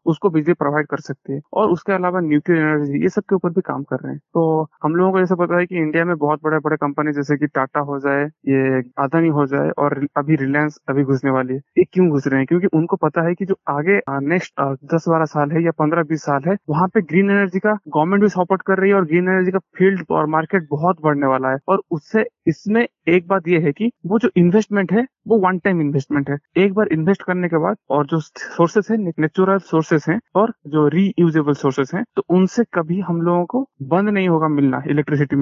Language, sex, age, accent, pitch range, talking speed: Hindi, male, 20-39, native, 145-185 Hz, 235 wpm